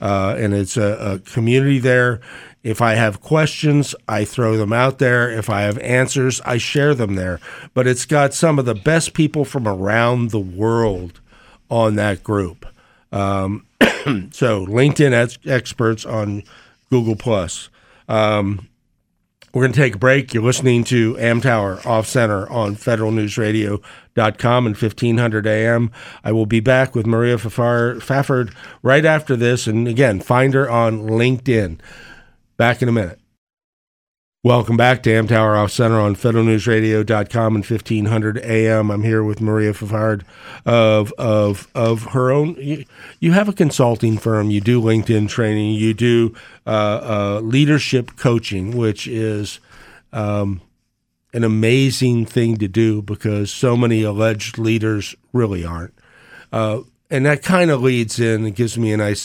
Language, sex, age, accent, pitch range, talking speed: English, male, 50-69, American, 105-125 Hz, 150 wpm